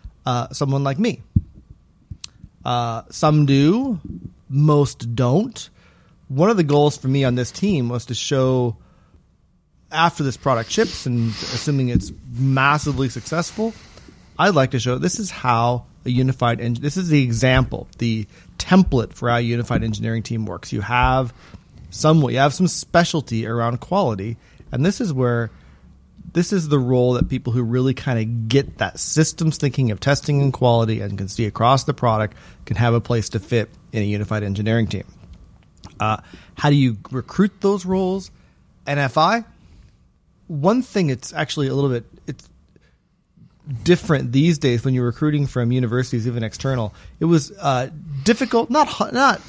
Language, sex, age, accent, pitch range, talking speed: English, male, 30-49, American, 115-155 Hz, 160 wpm